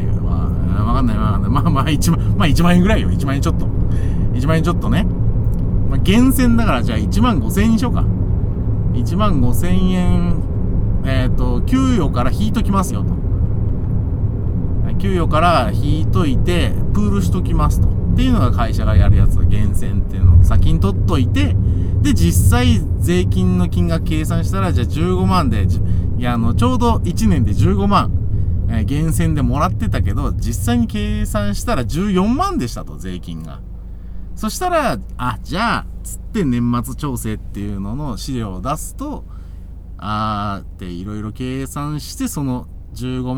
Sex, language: male, Japanese